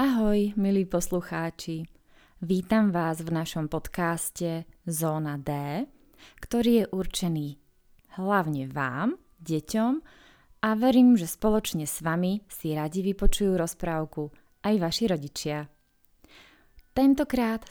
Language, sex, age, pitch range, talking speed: Czech, female, 20-39, 155-205 Hz, 100 wpm